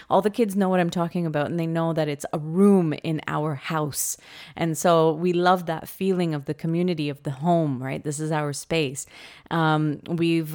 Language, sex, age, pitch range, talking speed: English, female, 30-49, 150-175 Hz, 210 wpm